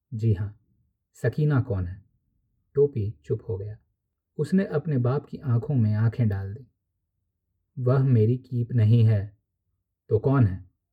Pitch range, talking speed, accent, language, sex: 100-125 Hz, 145 wpm, native, Hindi, male